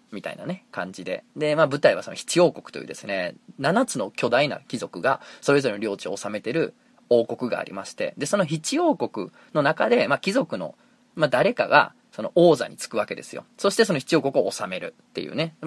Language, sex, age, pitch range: Japanese, male, 20-39, 125-200 Hz